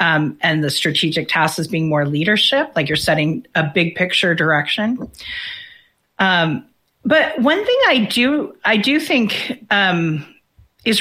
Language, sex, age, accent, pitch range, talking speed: English, female, 40-59, American, 170-240 Hz, 145 wpm